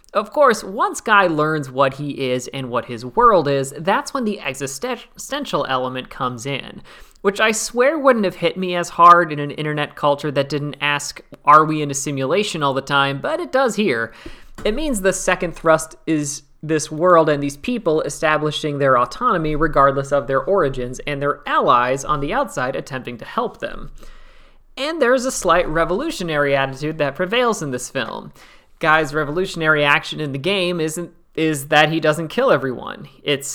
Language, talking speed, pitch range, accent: English, 180 wpm, 140-180 Hz, American